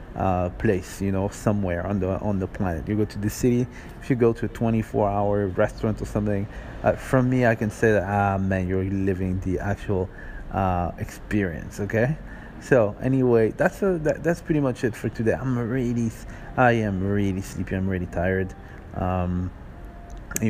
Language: English